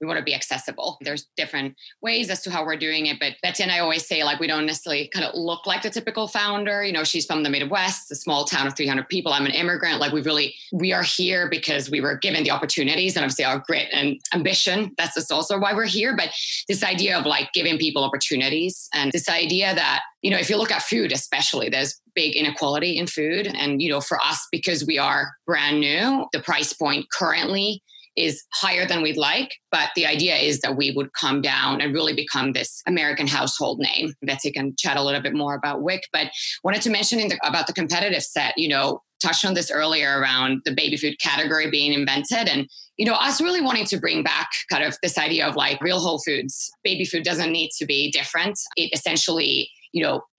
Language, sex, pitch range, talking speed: English, female, 145-185 Hz, 225 wpm